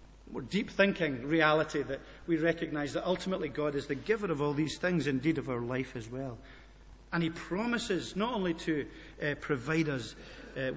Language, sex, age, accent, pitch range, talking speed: English, male, 50-69, British, 150-210 Hz, 185 wpm